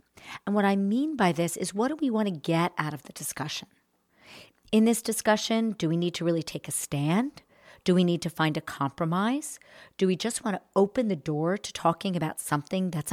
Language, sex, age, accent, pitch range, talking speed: English, female, 50-69, American, 160-215 Hz, 220 wpm